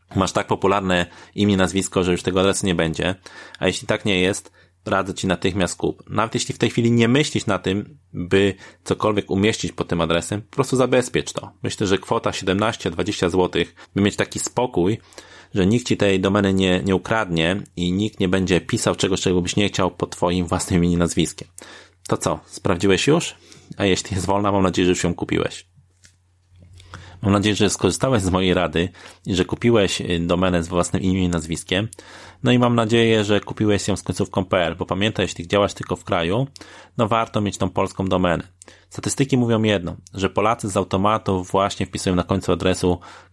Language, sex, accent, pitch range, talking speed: Polish, male, native, 90-105 Hz, 185 wpm